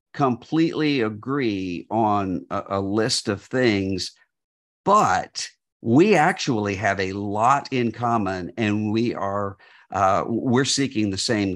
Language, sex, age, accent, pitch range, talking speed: English, male, 50-69, American, 100-140 Hz, 125 wpm